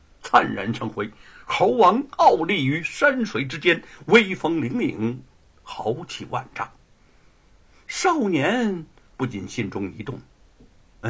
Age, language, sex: 60-79, Chinese, male